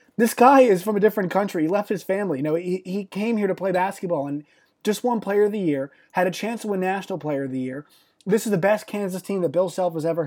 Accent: American